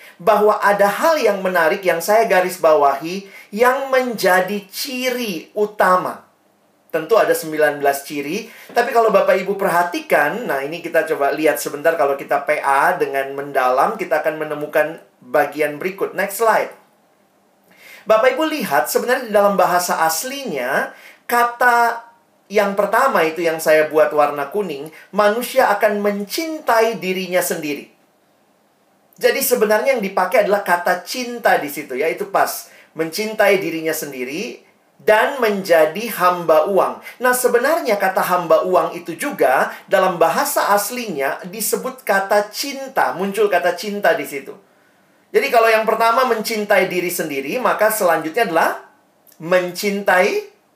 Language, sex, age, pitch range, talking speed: Indonesian, male, 40-59, 165-225 Hz, 130 wpm